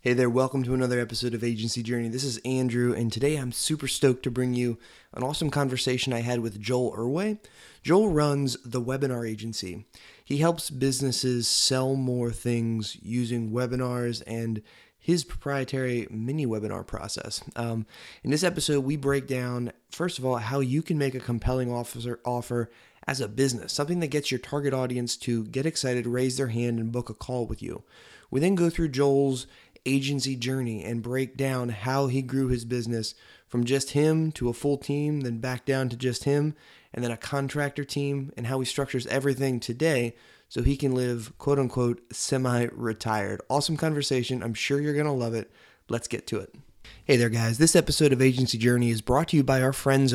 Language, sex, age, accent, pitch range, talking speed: English, male, 20-39, American, 120-140 Hz, 190 wpm